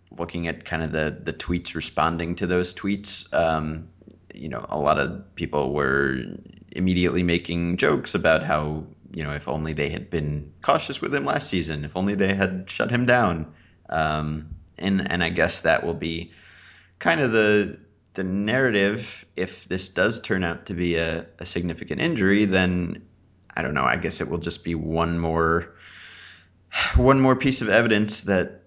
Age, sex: 30-49, male